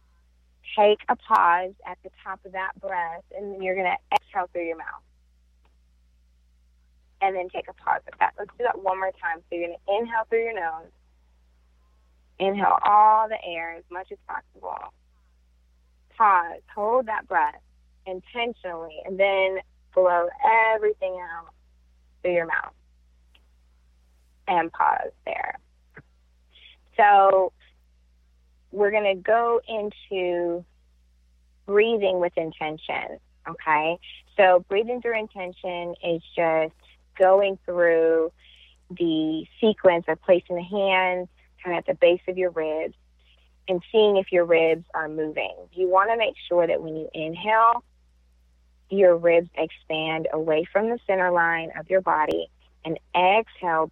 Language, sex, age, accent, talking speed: English, female, 20-39, American, 140 wpm